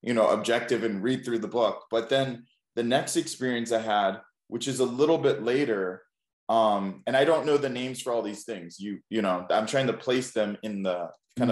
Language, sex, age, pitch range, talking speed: English, male, 20-39, 100-130 Hz, 225 wpm